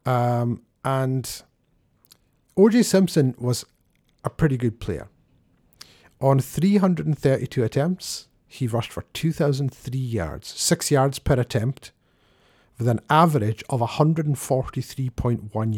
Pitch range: 110-145 Hz